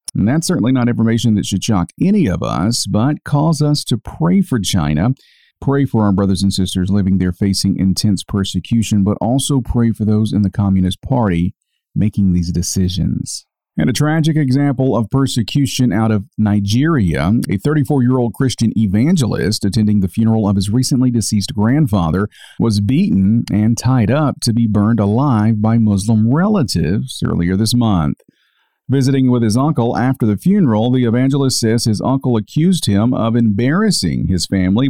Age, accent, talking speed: 40-59, American, 165 wpm